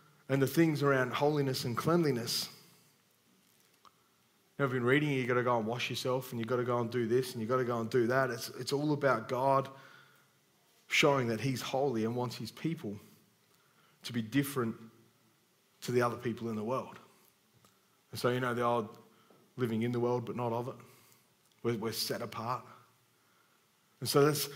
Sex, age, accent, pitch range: male, 30-49, Australian, 115-140 Hz